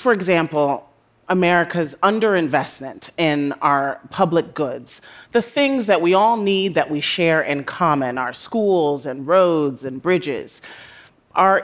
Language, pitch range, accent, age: Korean, 150-195 Hz, American, 30-49